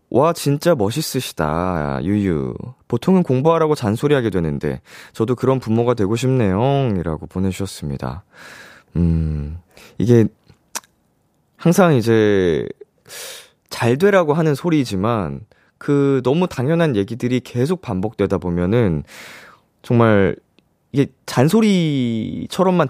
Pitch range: 90-140 Hz